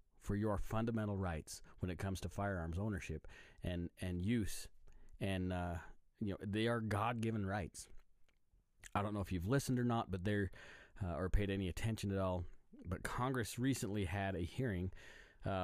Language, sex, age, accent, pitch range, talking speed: English, male, 30-49, American, 95-110 Hz, 175 wpm